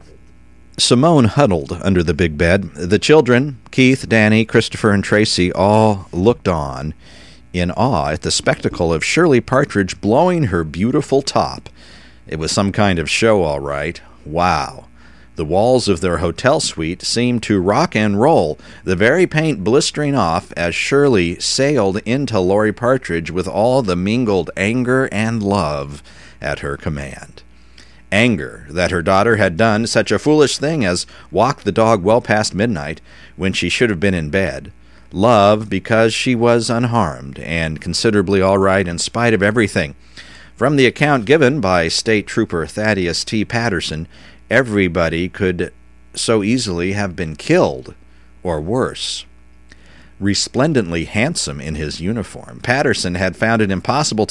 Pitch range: 80-110 Hz